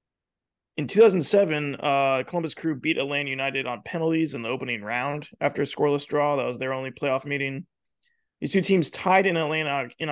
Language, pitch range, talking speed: English, 130-165 Hz, 185 wpm